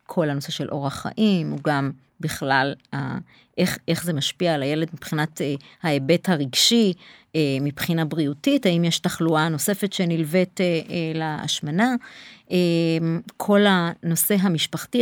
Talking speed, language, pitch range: 110 wpm, Hebrew, 165-205 Hz